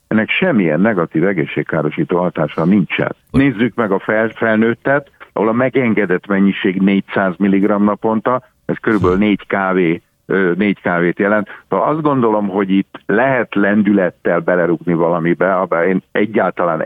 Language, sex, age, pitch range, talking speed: English, male, 50-69, 90-110 Hz, 115 wpm